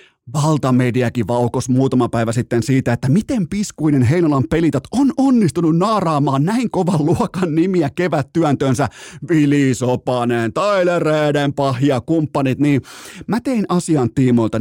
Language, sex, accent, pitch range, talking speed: Finnish, male, native, 135-190 Hz, 120 wpm